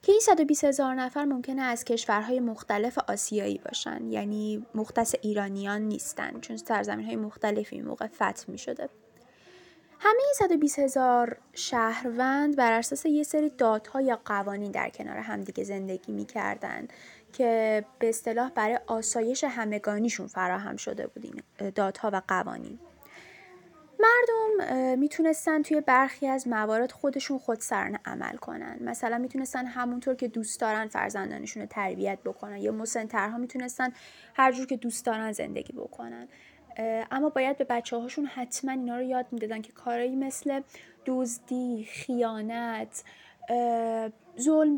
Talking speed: 135 wpm